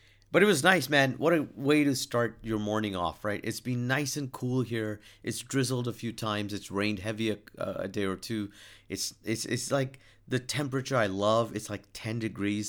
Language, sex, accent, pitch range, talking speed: English, male, American, 100-130 Hz, 220 wpm